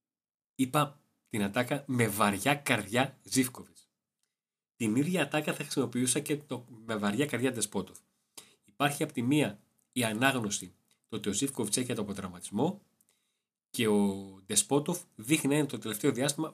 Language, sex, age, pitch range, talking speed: Greek, male, 30-49, 105-140 Hz, 145 wpm